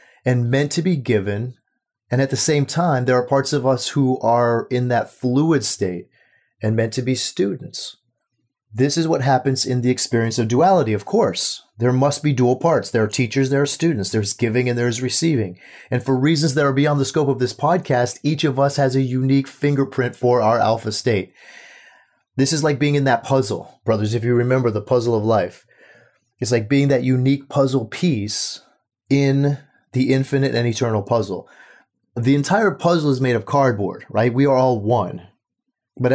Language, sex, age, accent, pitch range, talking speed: English, male, 30-49, American, 115-140 Hz, 195 wpm